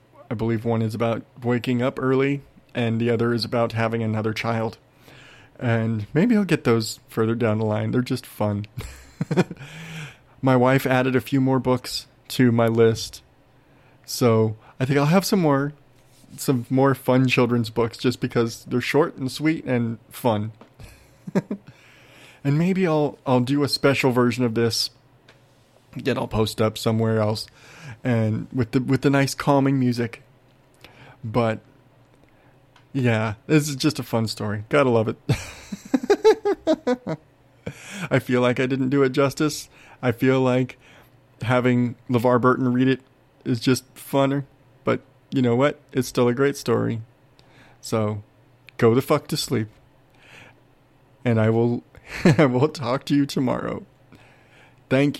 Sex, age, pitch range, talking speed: male, 30-49, 120-140 Hz, 150 wpm